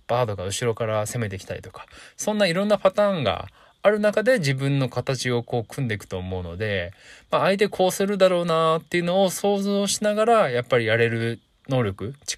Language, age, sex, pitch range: Japanese, 20-39, male, 110-170 Hz